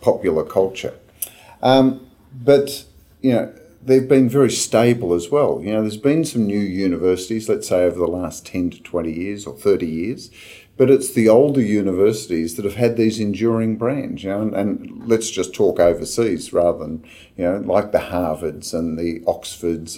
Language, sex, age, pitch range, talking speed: English, male, 50-69, 90-115 Hz, 180 wpm